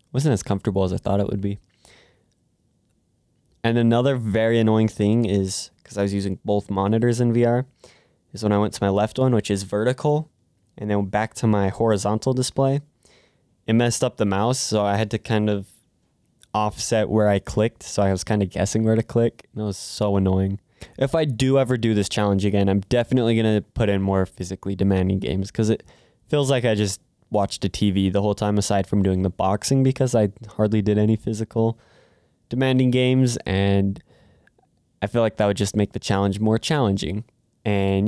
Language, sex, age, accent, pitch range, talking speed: English, male, 20-39, American, 100-115 Hz, 200 wpm